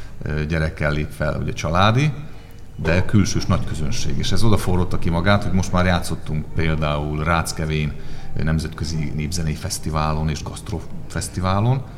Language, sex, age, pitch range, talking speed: Hungarian, male, 40-59, 80-105 Hz, 135 wpm